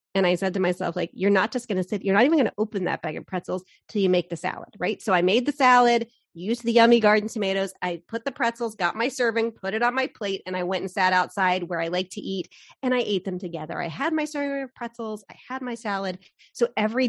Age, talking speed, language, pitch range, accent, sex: 30-49, 275 wpm, English, 180-235 Hz, American, female